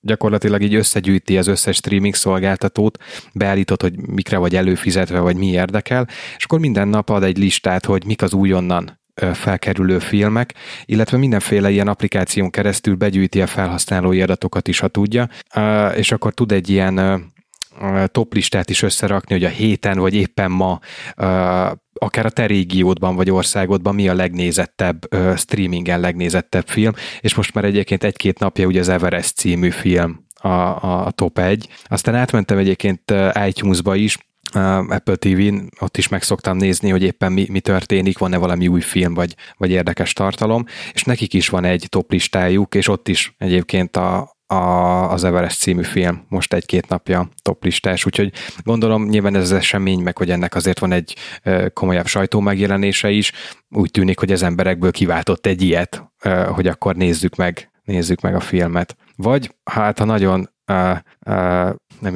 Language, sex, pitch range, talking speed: Hungarian, male, 90-100 Hz, 160 wpm